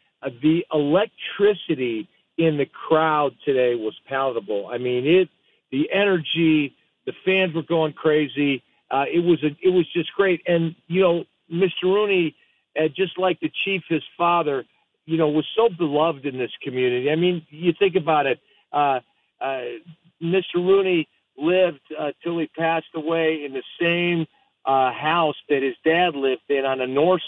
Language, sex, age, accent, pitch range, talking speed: English, male, 50-69, American, 140-175 Hz, 165 wpm